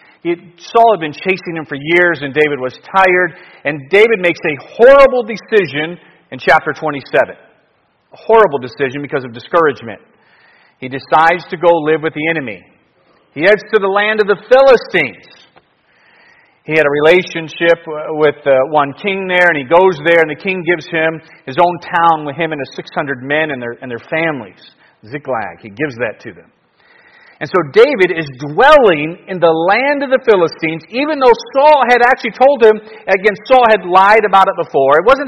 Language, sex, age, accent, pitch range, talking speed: English, male, 40-59, American, 160-240 Hz, 180 wpm